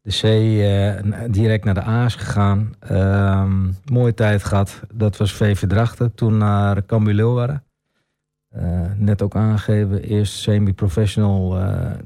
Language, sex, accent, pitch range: Dutch, male, Dutch, 100-110 Hz